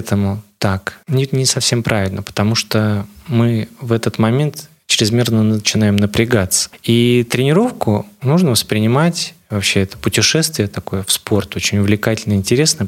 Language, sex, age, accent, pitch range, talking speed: Russian, male, 20-39, native, 105-125 Hz, 130 wpm